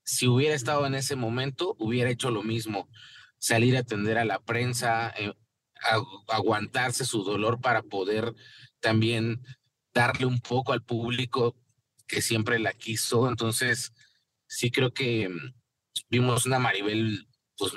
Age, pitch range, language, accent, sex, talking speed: 30-49, 105-125 Hz, Spanish, Mexican, male, 140 wpm